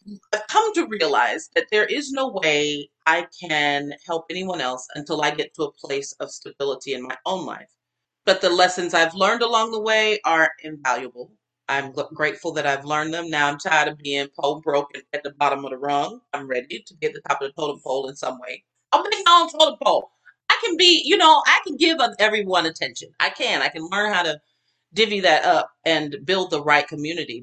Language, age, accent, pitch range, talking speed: English, 40-59, American, 145-210 Hz, 215 wpm